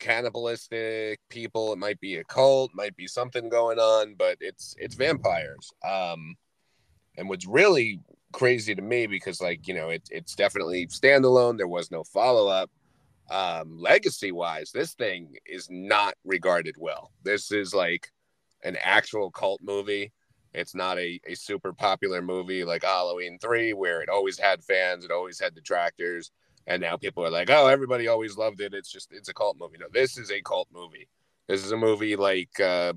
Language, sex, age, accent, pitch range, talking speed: English, male, 30-49, American, 90-115 Hz, 175 wpm